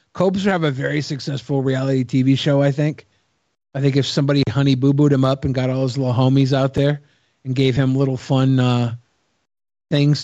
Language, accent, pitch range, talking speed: English, American, 135-160 Hz, 200 wpm